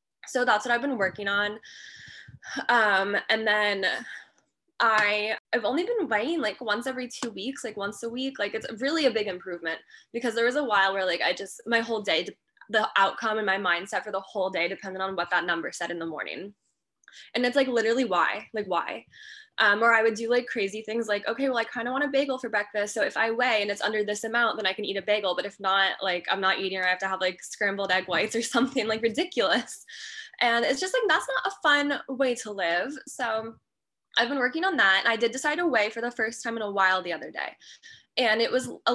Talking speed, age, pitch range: 240 wpm, 10-29, 200-250 Hz